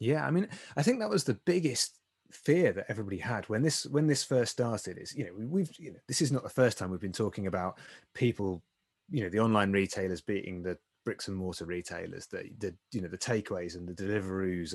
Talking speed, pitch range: 230 wpm, 95-140 Hz